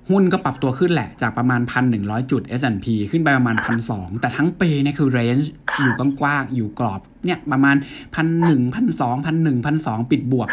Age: 60-79